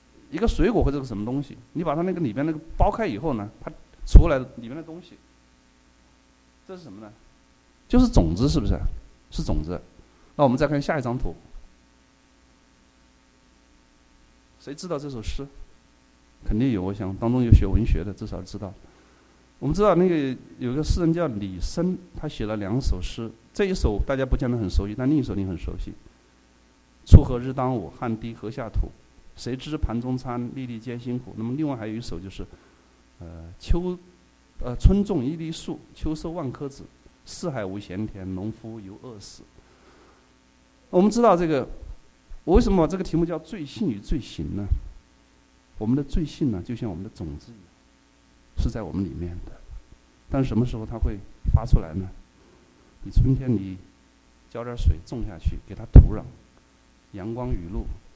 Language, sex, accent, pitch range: English, male, Chinese, 85-135 Hz